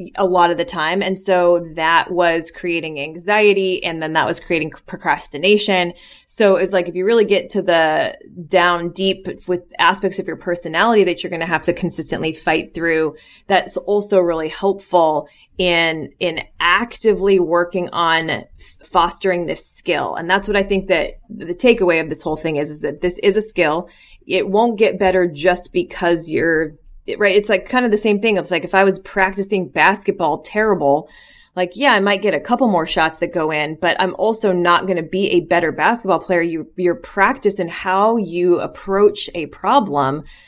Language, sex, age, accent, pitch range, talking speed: English, female, 20-39, American, 170-195 Hz, 190 wpm